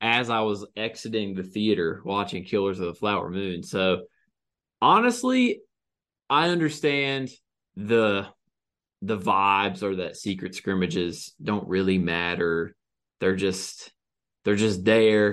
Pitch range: 95-135 Hz